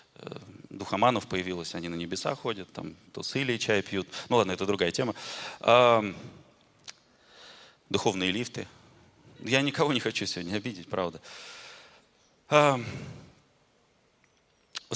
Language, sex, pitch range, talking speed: Russian, male, 95-140 Hz, 105 wpm